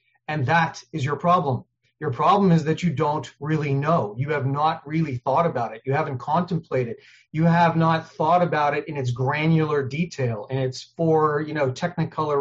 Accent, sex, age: American, male, 30-49